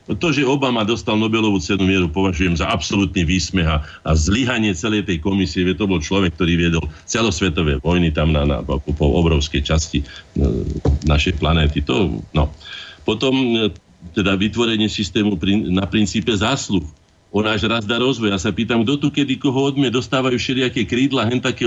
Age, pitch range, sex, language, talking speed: 50-69, 90-120 Hz, male, Slovak, 165 wpm